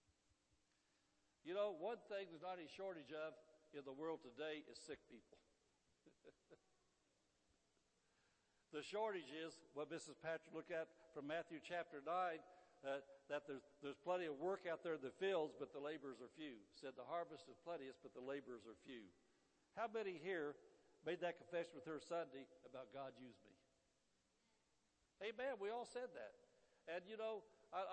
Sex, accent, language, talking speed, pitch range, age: male, American, English, 170 wpm, 140-180 Hz, 60-79